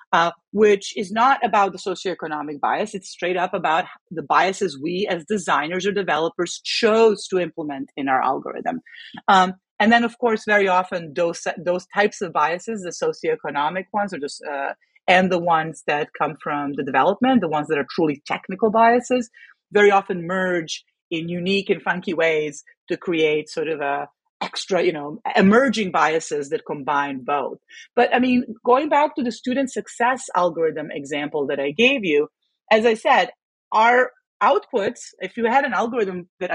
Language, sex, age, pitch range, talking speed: English, female, 40-59, 160-225 Hz, 170 wpm